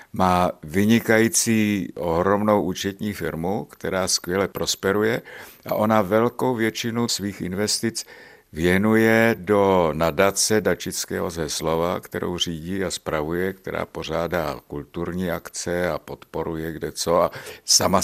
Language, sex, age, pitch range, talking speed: Czech, male, 60-79, 85-105 Hz, 110 wpm